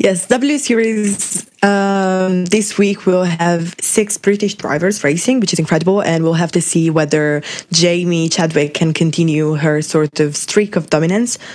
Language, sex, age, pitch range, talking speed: English, female, 20-39, 160-195 Hz, 160 wpm